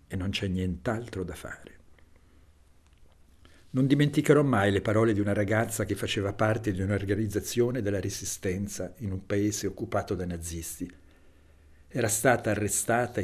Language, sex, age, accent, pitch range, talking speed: Italian, male, 60-79, native, 90-125 Hz, 135 wpm